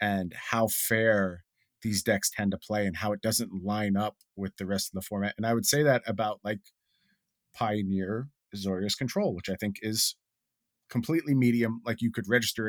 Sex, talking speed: male, 190 wpm